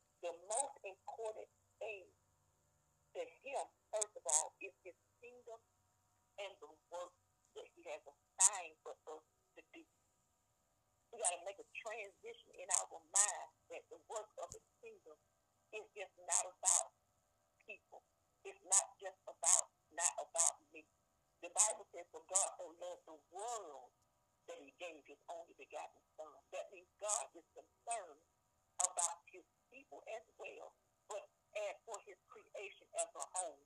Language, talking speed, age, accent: English, 145 wpm, 50-69, American